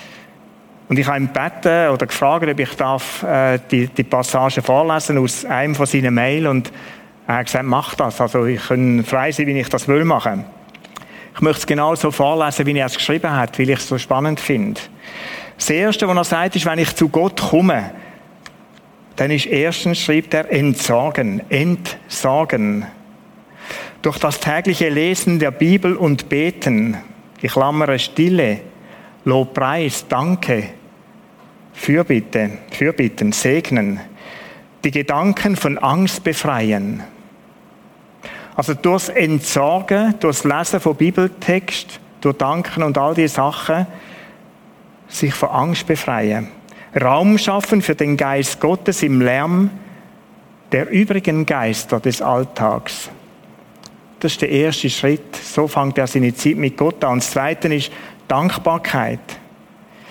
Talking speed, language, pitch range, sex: 140 wpm, German, 135-175 Hz, male